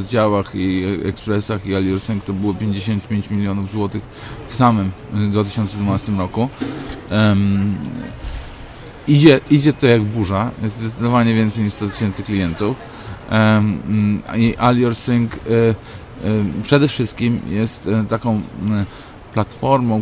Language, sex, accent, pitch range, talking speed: Polish, male, native, 100-115 Hz, 110 wpm